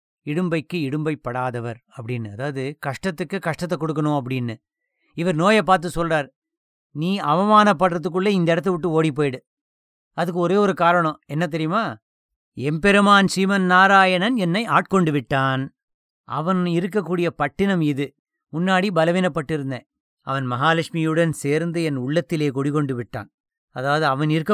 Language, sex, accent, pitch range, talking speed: English, male, Indian, 145-195 Hz, 110 wpm